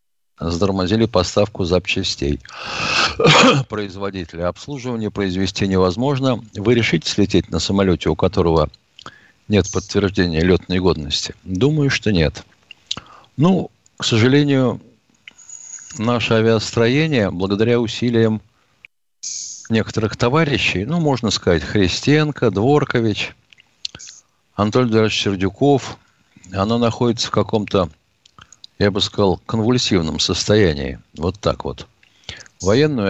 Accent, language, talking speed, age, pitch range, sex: native, Russian, 95 wpm, 50-69, 95-125 Hz, male